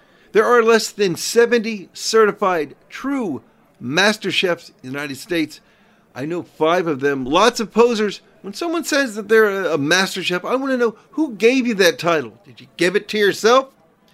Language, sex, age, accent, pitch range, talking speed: English, male, 50-69, American, 160-220 Hz, 185 wpm